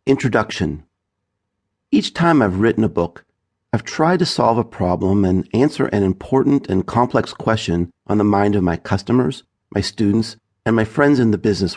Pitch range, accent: 100-140 Hz, American